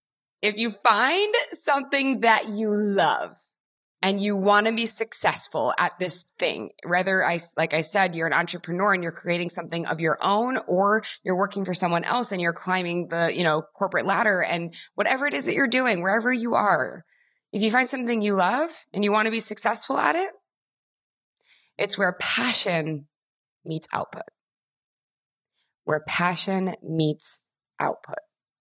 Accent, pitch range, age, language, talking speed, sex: American, 155-200 Hz, 20-39, English, 165 wpm, female